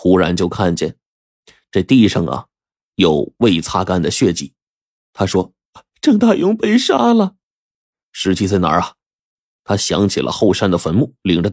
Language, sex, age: Chinese, male, 30-49